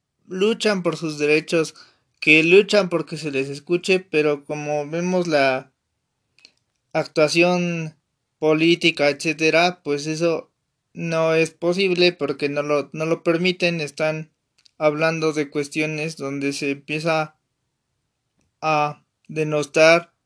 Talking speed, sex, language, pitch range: 110 wpm, male, Spanish, 145-175 Hz